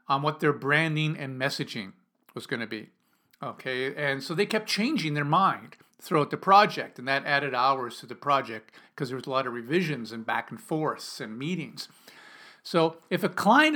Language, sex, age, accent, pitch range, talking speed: English, male, 50-69, American, 140-180 Hz, 190 wpm